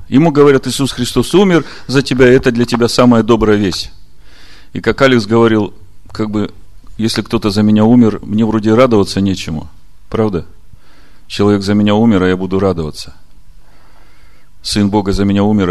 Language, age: Russian, 40-59